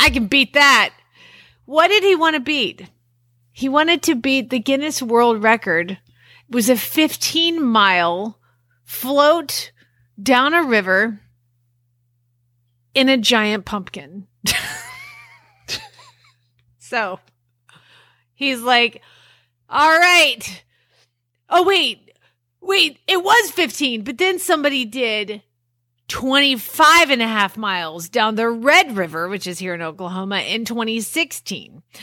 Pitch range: 210-310 Hz